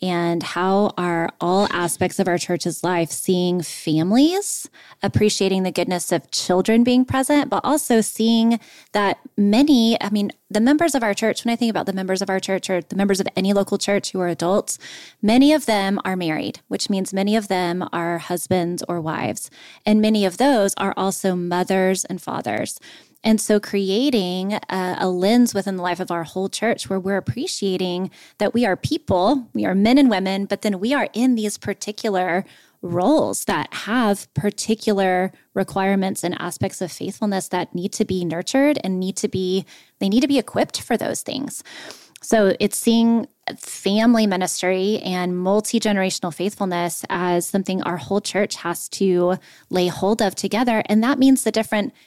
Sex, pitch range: female, 180-220 Hz